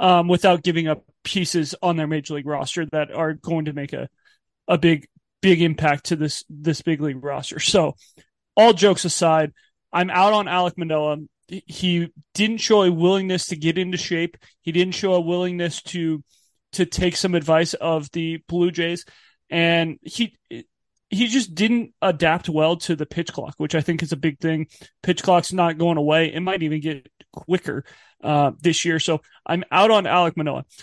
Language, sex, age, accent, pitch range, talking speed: English, male, 30-49, American, 155-180 Hz, 185 wpm